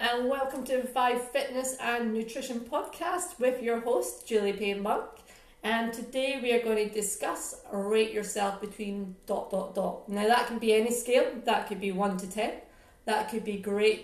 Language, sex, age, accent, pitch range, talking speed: English, female, 40-59, British, 210-240 Hz, 185 wpm